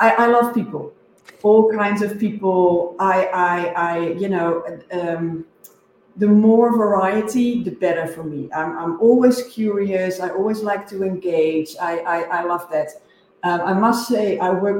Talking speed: 165 wpm